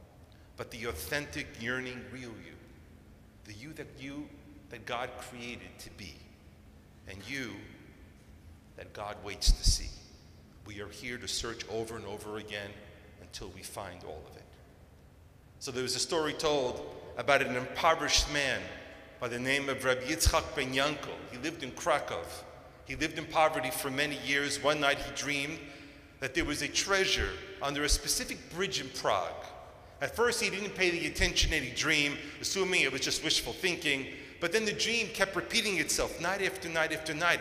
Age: 40-59